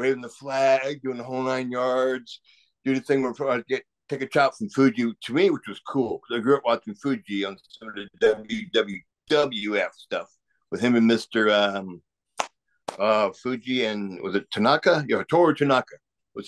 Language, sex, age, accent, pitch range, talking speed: English, male, 60-79, American, 110-135 Hz, 180 wpm